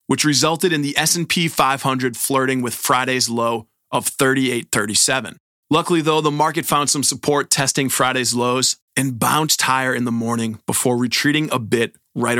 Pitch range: 120-150 Hz